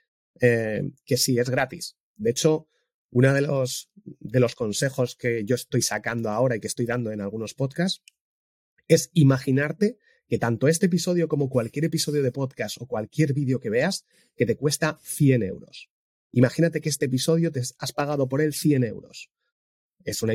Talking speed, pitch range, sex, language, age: 175 wpm, 125-165 Hz, male, Spanish, 30-49